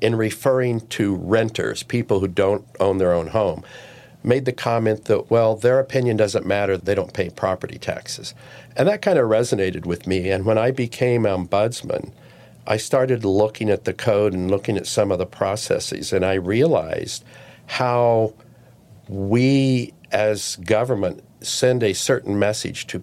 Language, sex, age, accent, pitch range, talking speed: English, male, 50-69, American, 100-125 Hz, 160 wpm